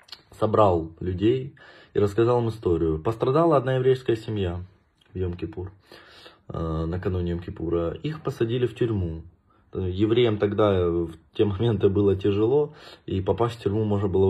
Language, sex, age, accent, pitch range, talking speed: Russian, male, 20-39, native, 90-115 Hz, 130 wpm